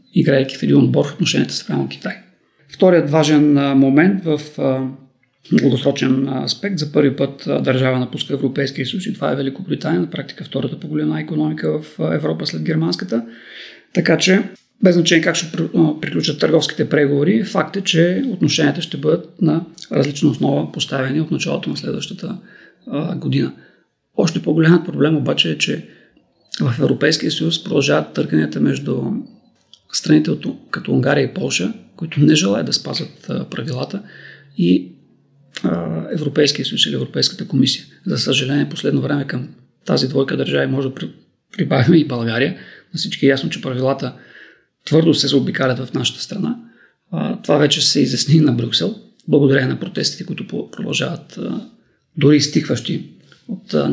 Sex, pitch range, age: male, 135-165 Hz, 40-59